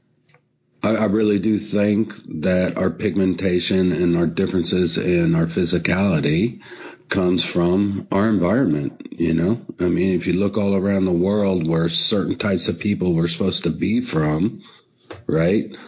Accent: American